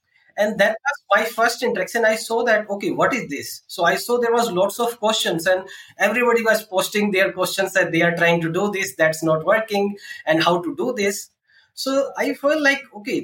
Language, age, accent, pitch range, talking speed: English, 20-39, Indian, 165-215 Hz, 215 wpm